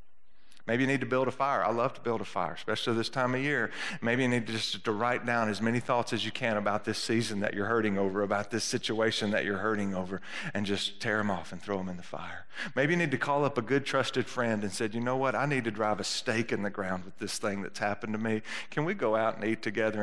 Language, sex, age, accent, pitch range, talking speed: English, male, 40-59, American, 100-115 Hz, 285 wpm